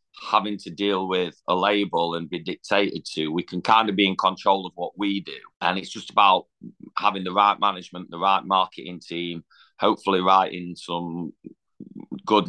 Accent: British